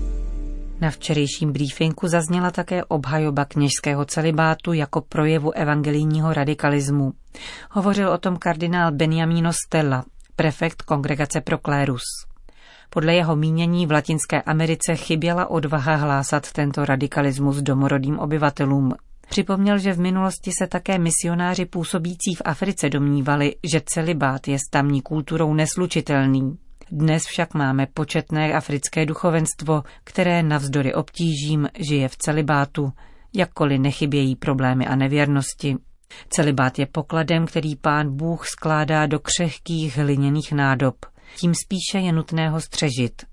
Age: 40-59